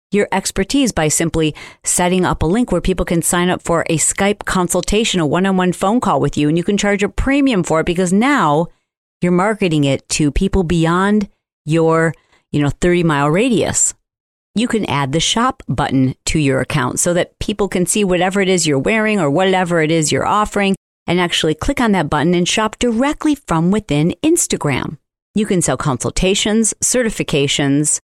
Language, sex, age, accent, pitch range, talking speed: English, female, 40-59, American, 160-215 Hz, 185 wpm